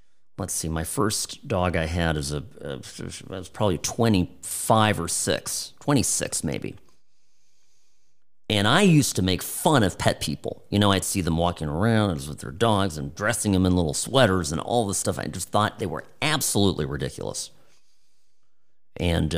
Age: 40-59